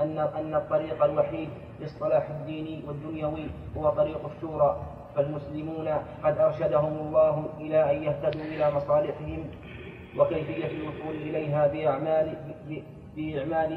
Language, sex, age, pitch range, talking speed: Arabic, male, 20-39, 145-155 Hz, 100 wpm